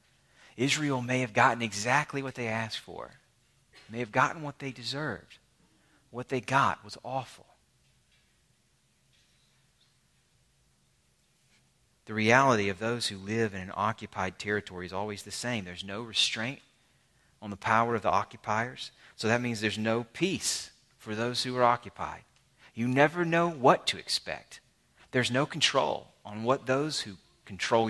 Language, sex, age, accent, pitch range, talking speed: English, male, 30-49, American, 105-125 Hz, 145 wpm